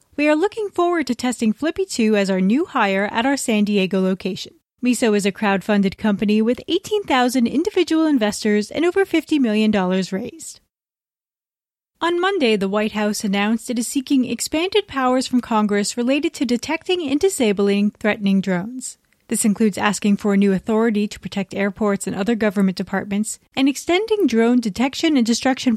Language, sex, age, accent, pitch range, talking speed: English, female, 30-49, American, 205-275 Hz, 165 wpm